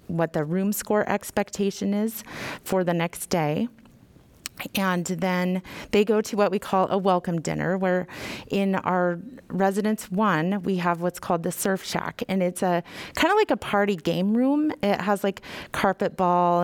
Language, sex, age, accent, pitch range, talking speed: English, female, 30-49, American, 170-200 Hz, 175 wpm